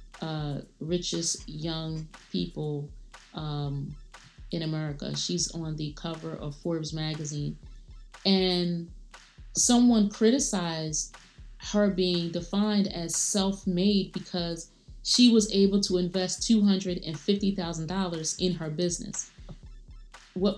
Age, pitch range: 30-49, 160-200 Hz